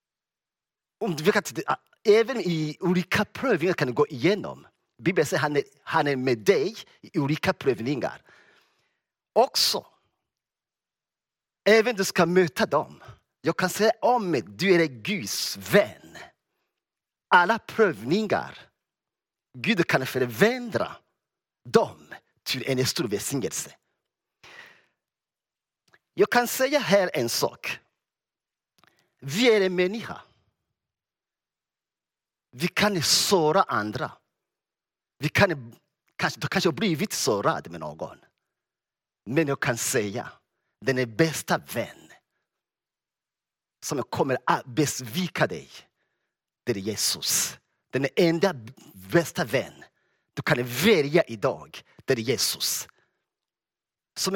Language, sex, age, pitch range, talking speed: Swedish, male, 40-59, 140-210 Hz, 105 wpm